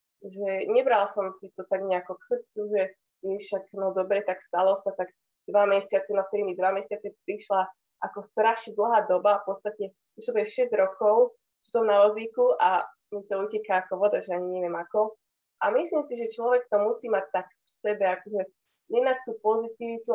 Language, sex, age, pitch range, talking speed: Slovak, female, 20-39, 190-215 Hz, 190 wpm